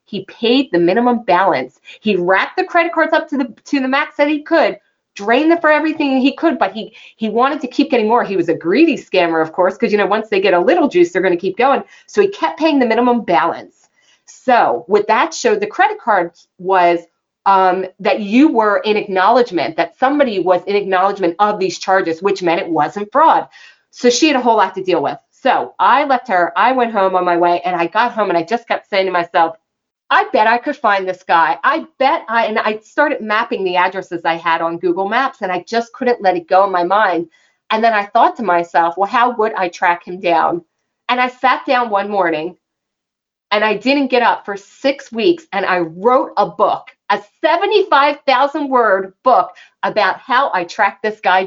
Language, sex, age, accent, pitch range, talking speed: English, female, 30-49, American, 185-265 Hz, 220 wpm